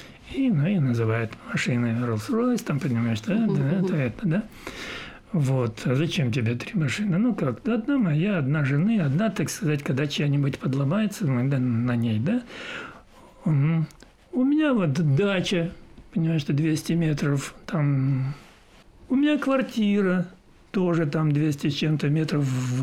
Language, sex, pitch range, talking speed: Russian, male, 140-210 Hz, 140 wpm